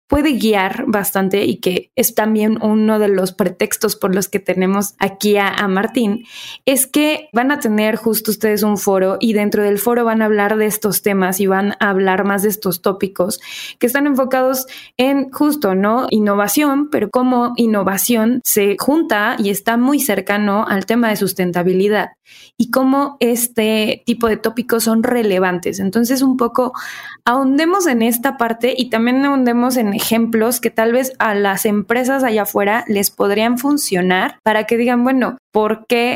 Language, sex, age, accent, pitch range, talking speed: Spanish, female, 20-39, Mexican, 200-240 Hz, 170 wpm